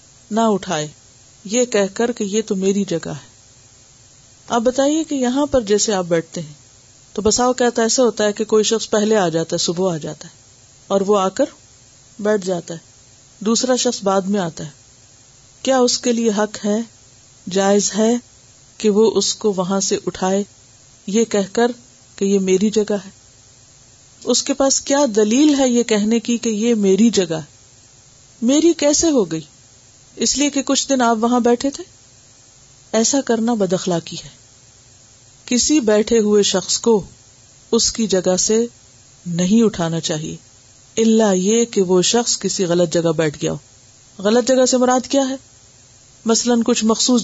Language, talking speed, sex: Urdu, 175 wpm, female